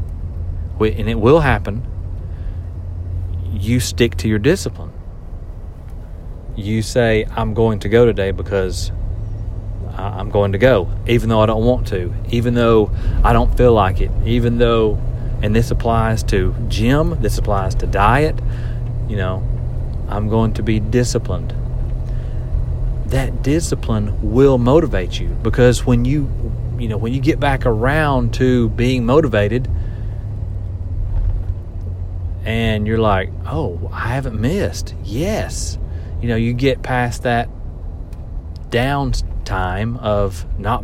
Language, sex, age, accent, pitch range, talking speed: English, male, 40-59, American, 90-120 Hz, 130 wpm